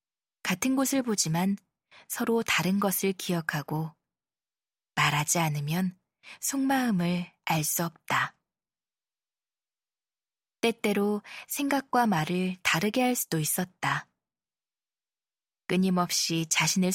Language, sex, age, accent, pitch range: Korean, female, 20-39, native, 175-230 Hz